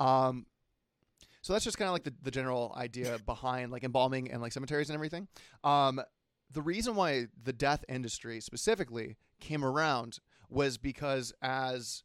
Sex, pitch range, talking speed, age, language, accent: male, 120-145 Hz, 155 wpm, 30-49, English, American